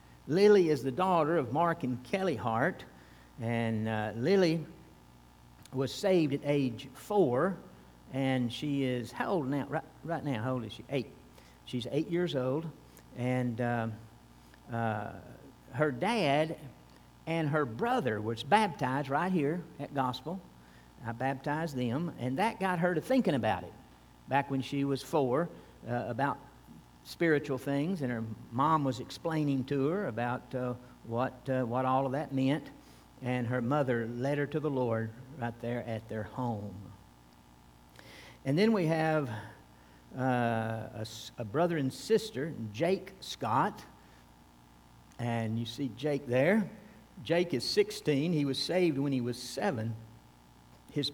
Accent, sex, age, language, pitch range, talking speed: American, male, 60-79, English, 110-150 Hz, 150 wpm